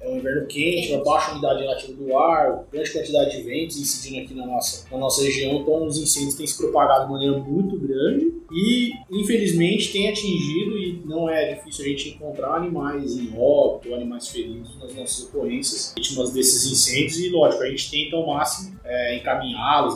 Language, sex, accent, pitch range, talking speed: Portuguese, male, Brazilian, 130-200 Hz, 185 wpm